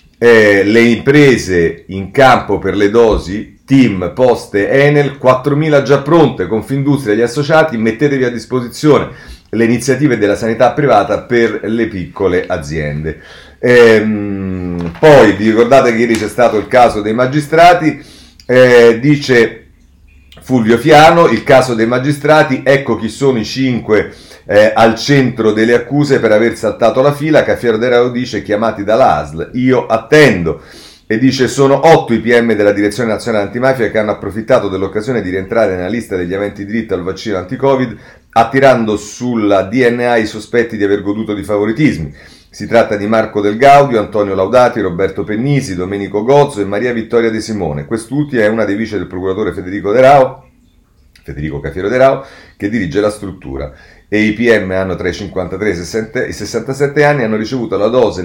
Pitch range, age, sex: 105-130 Hz, 40-59, male